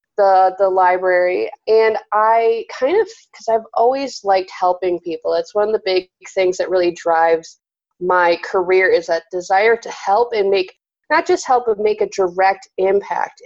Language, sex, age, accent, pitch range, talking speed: English, female, 30-49, American, 180-215 Hz, 175 wpm